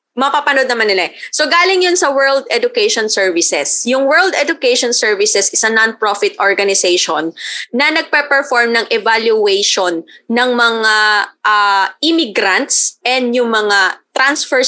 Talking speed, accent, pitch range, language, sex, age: 125 wpm, native, 215-300 Hz, Filipino, female, 20-39